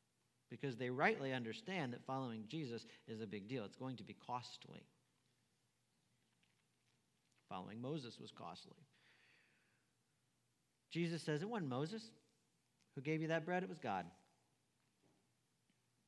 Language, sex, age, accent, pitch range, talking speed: English, male, 50-69, American, 115-160 Hz, 125 wpm